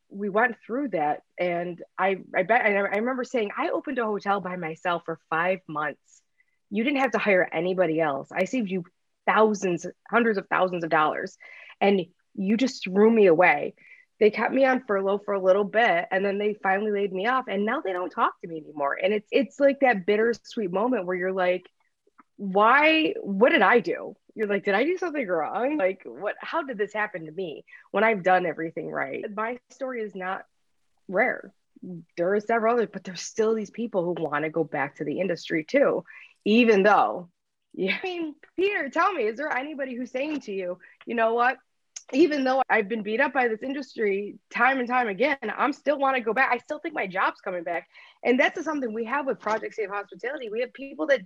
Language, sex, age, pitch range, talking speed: English, female, 20-39, 190-260 Hz, 210 wpm